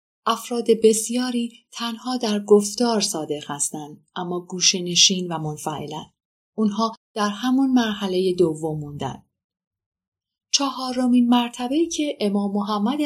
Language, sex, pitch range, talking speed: Persian, female, 175-230 Hz, 100 wpm